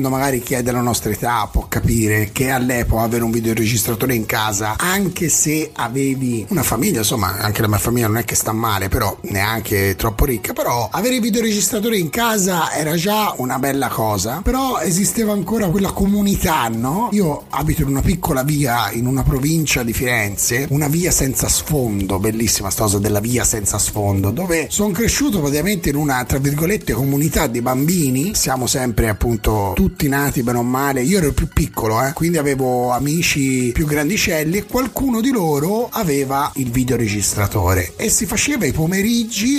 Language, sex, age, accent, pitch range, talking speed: Italian, male, 30-49, native, 115-165 Hz, 175 wpm